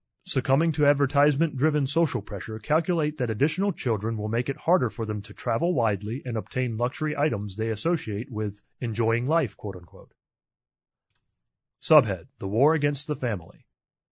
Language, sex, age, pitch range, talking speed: English, male, 30-49, 110-150 Hz, 145 wpm